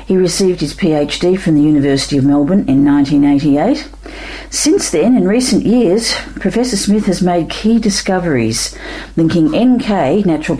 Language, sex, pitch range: English, female, 150-220 Hz